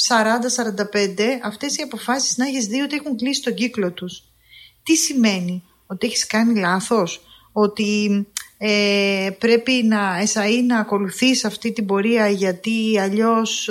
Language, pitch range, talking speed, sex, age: Greek, 205-265 Hz, 130 wpm, female, 20-39